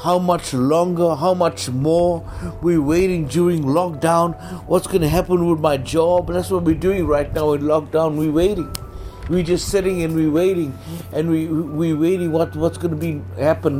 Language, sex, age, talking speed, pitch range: English, male, 60-79, 185 wpm, 155-185 Hz